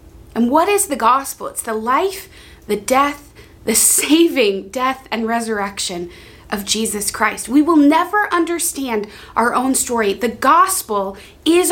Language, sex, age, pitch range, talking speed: English, female, 20-39, 230-300 Hz, 145 wpm